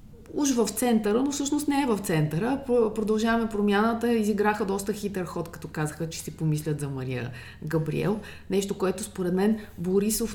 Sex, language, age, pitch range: female, Bulgarian, 30-49, 165-215 Hz